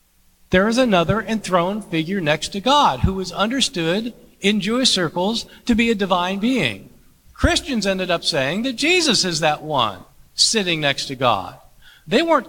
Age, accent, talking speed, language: 50-69, American, 165 wpm, English